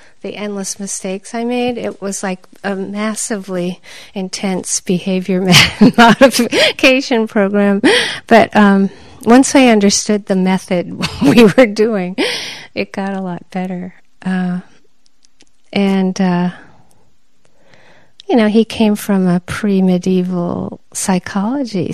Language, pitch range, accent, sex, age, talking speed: English, 180-210 Hz, American, female, 40-59, 110 wpm